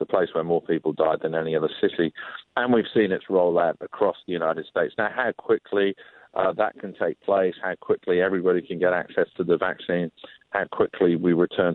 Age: 50-69